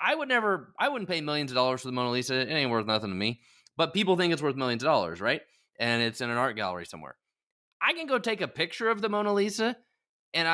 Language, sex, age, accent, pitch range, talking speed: English, male, 20-39, American, 130-195 Hz, 260 wpm